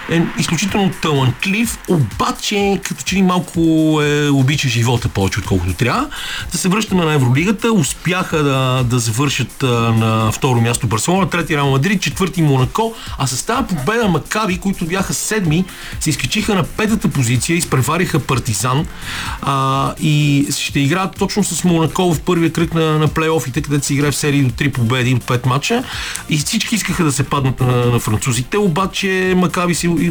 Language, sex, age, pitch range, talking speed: Bulgarian, male, 40-59, 125-185 Hz, 170 wpm